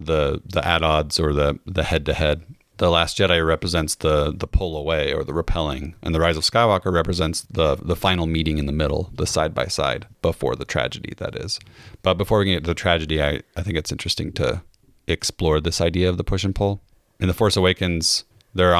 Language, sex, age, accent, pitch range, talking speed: English, male, 30-49, American, 80-95 Hz, 215 wpm